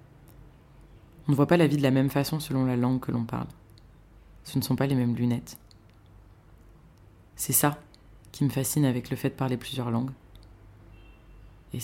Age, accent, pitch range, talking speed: 20-39, French, 110-135 Hz, 180 wpm